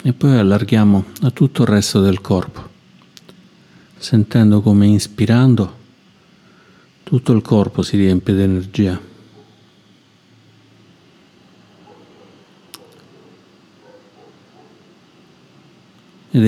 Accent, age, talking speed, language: native, 50-69, 75 wpm, Italian